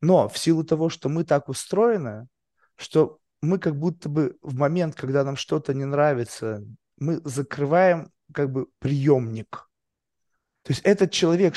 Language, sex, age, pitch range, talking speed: Russian, male, 20-39, 135-165 Hz, 150 wpm